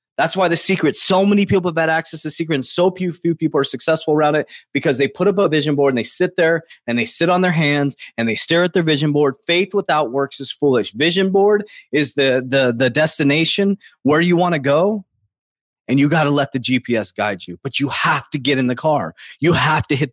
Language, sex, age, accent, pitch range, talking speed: English, male, 30-49, American, 135-175 Hz, 245 wpm